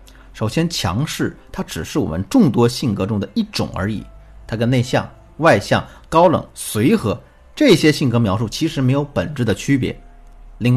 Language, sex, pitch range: Chinese, male, 100-145 Hz